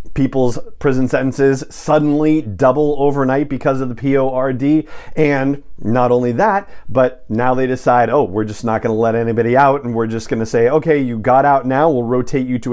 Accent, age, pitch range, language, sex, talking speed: American, 40-59, 115-140 Hz, English, male, 190 wpm